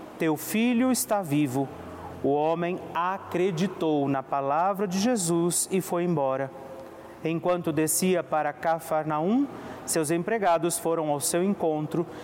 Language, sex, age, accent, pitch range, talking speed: Portuguese, male, 30-49, Brazilian, 140-190 Hz, 120 wpm